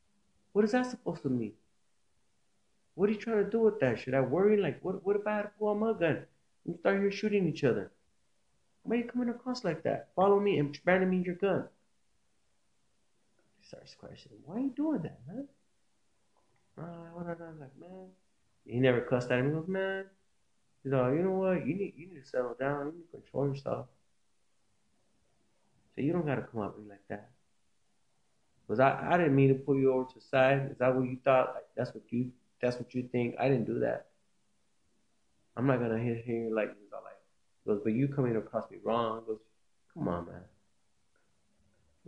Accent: American